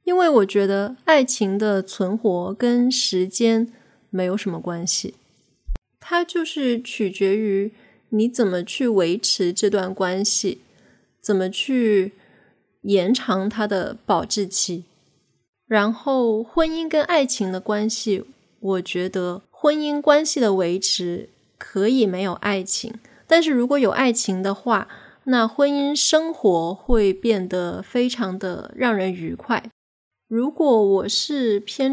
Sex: female